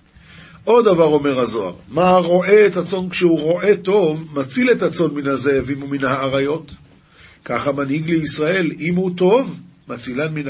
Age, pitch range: 50-69, 135-180 Hz